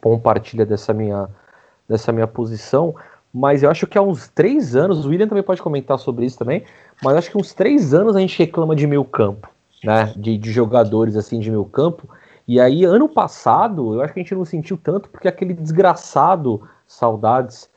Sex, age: male, 30-49